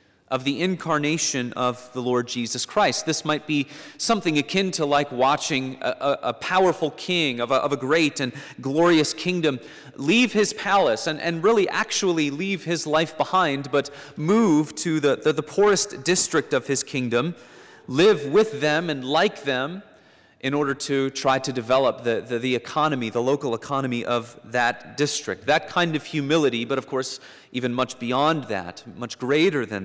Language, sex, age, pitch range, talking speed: English, male, 30-49, 120-160 Hz, 175 wpm